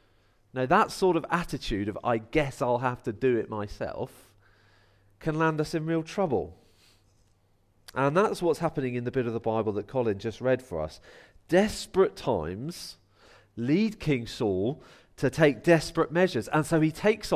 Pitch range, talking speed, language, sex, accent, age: 115-165 Hz, 170 wpm, English, male, British, 40-59